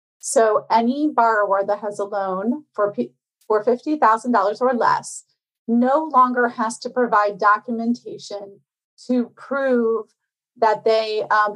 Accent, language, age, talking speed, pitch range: American, English, 30-49, 125 wpm, 200-235 Hz